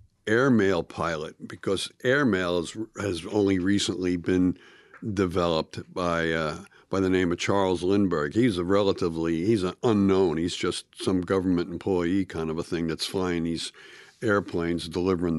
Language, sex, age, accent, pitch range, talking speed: English, male, 60-79, American, 90-105 Hz, 145 wpm